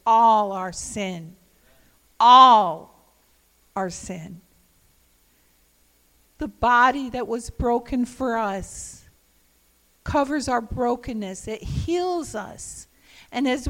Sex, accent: female, American